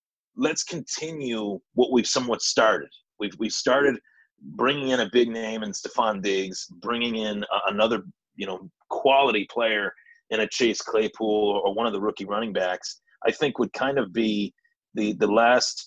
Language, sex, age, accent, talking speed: English, male, 30-49, American, 165 wpm